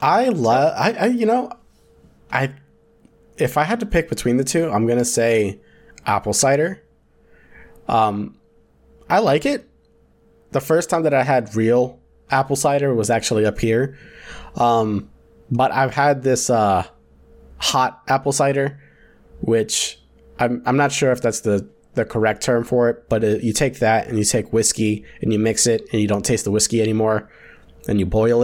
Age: 20-39